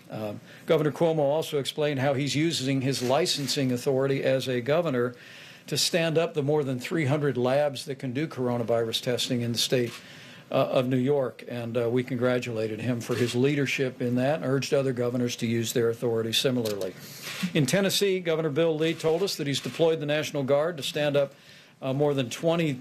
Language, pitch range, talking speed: English, 125-150 Hz, 190 wpm